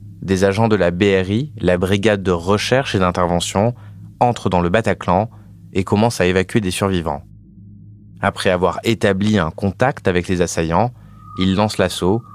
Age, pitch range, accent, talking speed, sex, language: 20-39, 90-110 Hz, French, 155 wpm, male, French